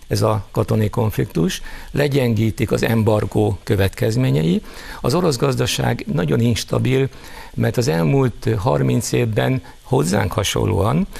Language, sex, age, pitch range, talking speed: Hungarian, male, 60-79, 105-135 Hz, 105 wpm